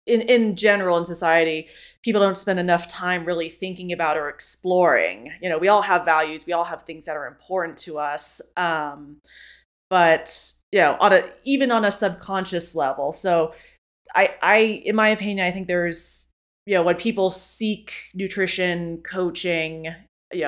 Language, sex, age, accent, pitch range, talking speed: English, female, 20-39, American, 160-185 Hz, 170 wpm